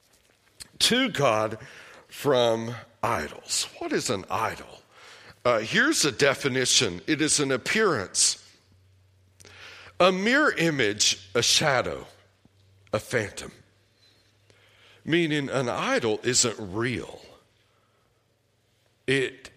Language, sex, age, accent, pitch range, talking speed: English, male, 60-79, American, 110-175 Hz, 90 wpm